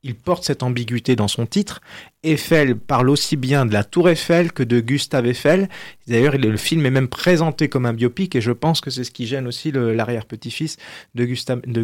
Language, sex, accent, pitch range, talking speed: French, male, French, 125-165 Hz, 210 wpm